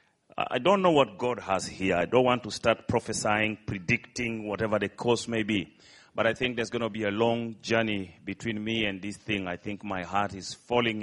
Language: English